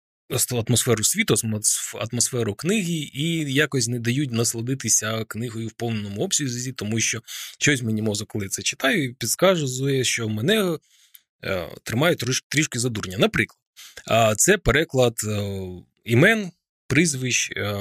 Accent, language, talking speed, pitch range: native, Ukrainian, 110 wpm, 105-135 Hz